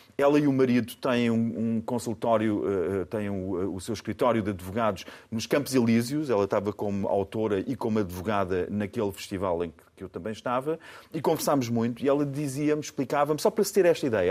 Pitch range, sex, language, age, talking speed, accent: 115-165 Hz, male, Portuguese, 40-59, 180 wpm, Portuguese